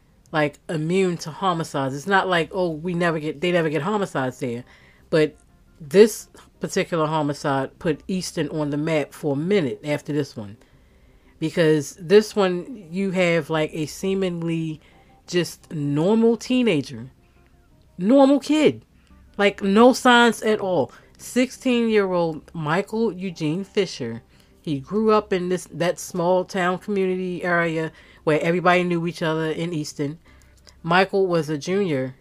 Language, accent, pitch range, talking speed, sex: English, American, 140-185 Hz, 140 wpm, female